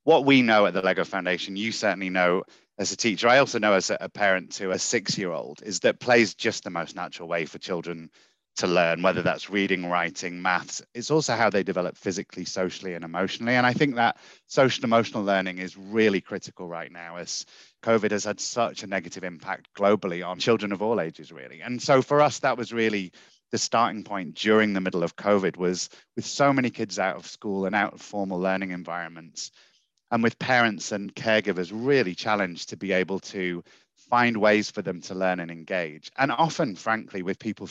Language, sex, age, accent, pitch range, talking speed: English, male, 30-49, British, 90-110 Hz, 205 wpm